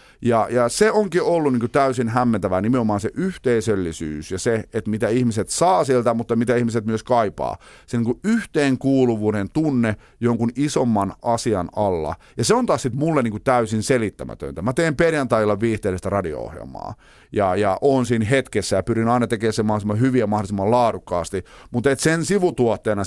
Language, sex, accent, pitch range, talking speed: Finnish, male, native, 105-135 Hz, 165 wpm